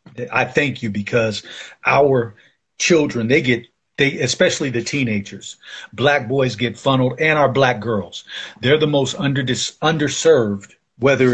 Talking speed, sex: 145 wpm, male